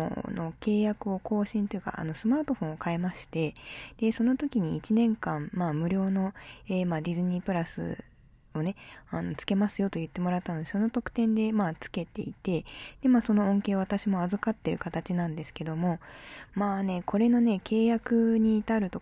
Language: Japanese